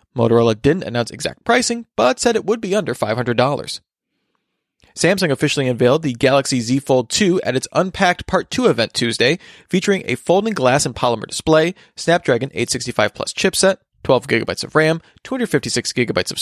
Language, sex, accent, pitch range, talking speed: English, male, American, 125-180 Hz, 155 wpm